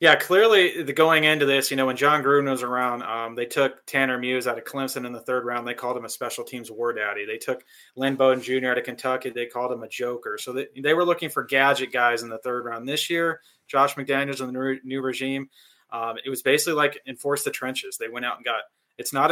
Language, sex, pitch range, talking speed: English, male, 120-140 Hz, 255 wpm